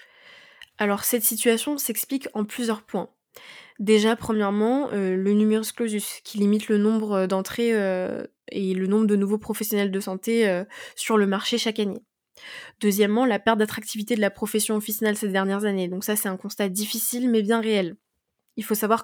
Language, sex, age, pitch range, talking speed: French, female, 20-39, 205-230 Hz, 175 wpm